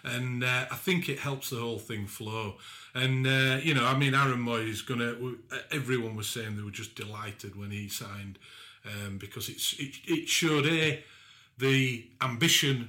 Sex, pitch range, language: male, 105-120 Hz, English